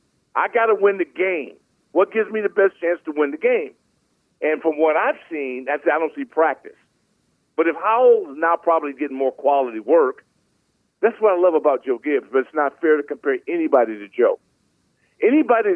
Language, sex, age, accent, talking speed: English, male, 50-69, American, 190 wpm